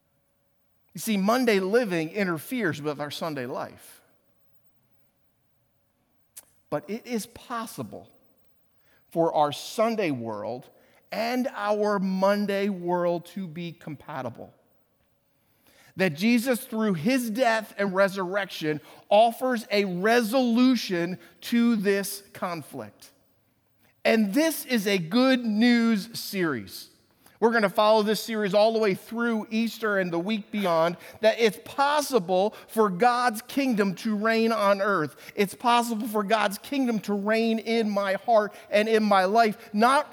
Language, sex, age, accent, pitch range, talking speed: English, male, 50-69, American, 180-245 Hz, 125 wpm